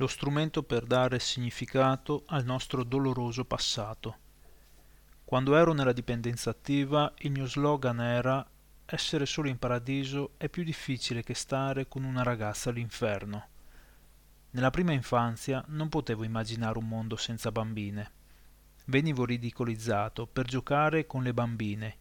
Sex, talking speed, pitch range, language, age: male, 130 wpm, 110-135 Hz, English, 30-49